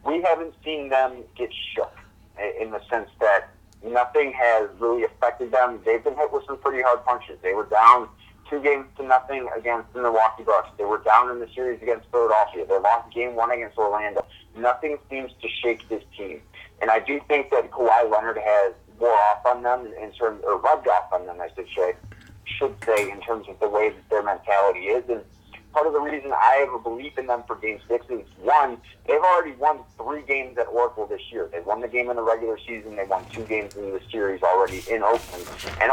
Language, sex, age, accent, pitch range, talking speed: English, male, 30-49, American, 110-170 Hz, 215 wpm